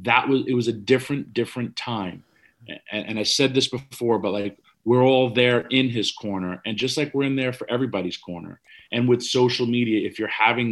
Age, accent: 40-59, American